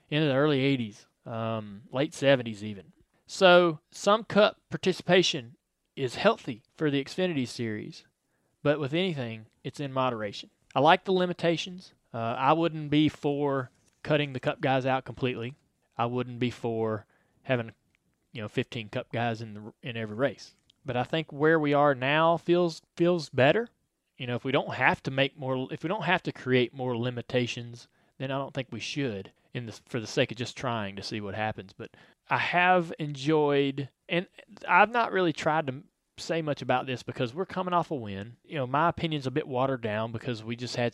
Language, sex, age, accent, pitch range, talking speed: English, male, 30-49, American, 115-155 Hz, 190 wpm